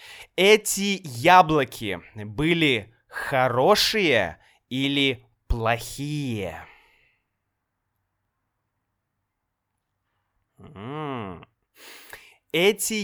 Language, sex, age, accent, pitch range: Russian, male, 20-39, native, 115-180 Hz